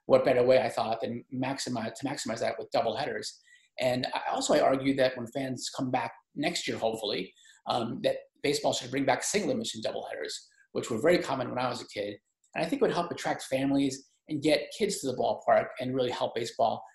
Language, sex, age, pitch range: English, male, 30-49, 125-205 Hz